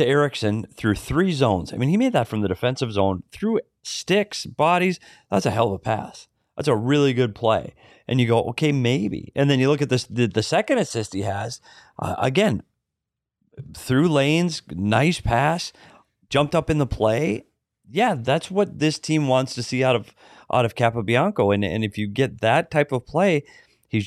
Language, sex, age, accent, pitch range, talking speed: English, male, 30-49, American, 110-145 Hz, 195 wpm